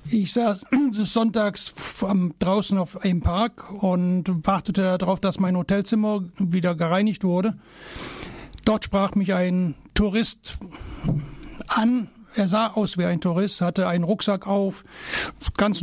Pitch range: 185-210 Hz